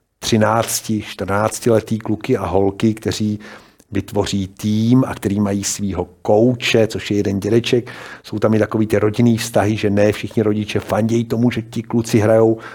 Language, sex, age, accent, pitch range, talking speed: Czech, male, 50-69, native, 100-115 Hz, 160 wpm